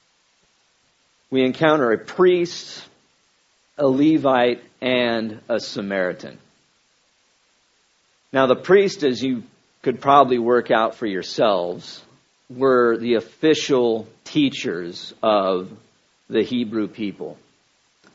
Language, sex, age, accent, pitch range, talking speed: English, male, 50-69, American, 115-140 Hz, 95 wpm